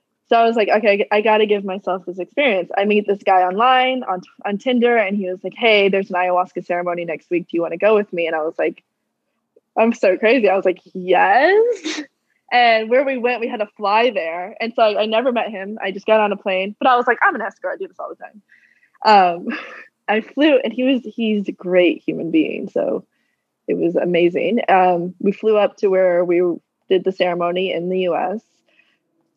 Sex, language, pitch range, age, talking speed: female, English, 185-235 Hz, 20-39, 225 wpm